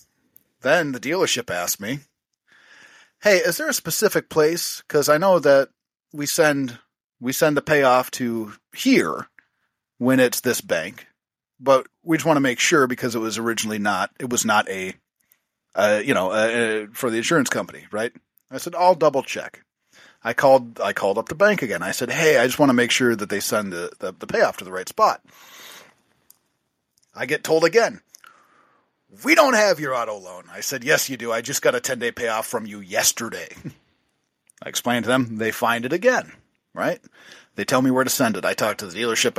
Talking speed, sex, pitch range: 200 wpm, male, 115-150 Hz